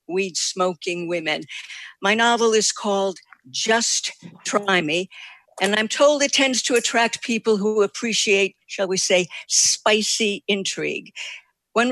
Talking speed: 125 wpm